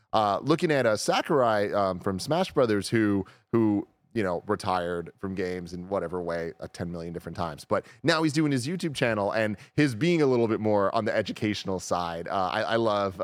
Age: 30-49